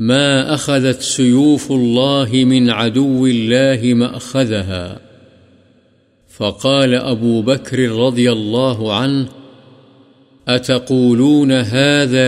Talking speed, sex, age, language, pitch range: 85 wpm, male, 50-69, Urdu, 120-135 Hz